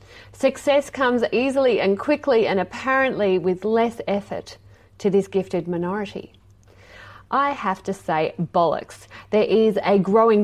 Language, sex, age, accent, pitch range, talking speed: English, female, 30-49, Australian, 165-220 Hz, 130 wpm